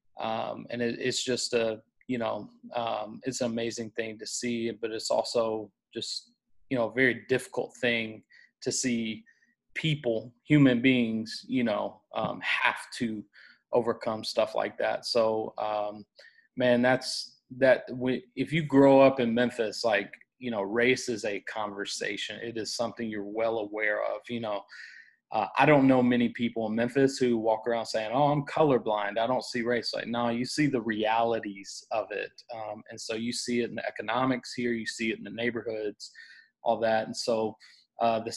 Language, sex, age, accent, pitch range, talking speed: English, male, 30-49, American, 110-130 Hz, 180 wpm